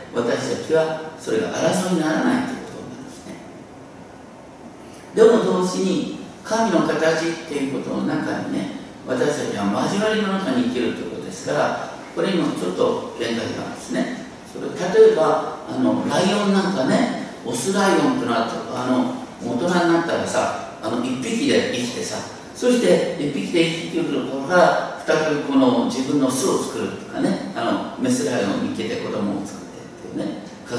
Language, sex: Japanese, male